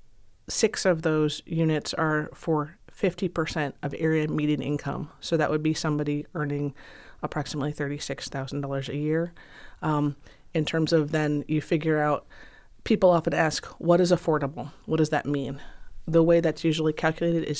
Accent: American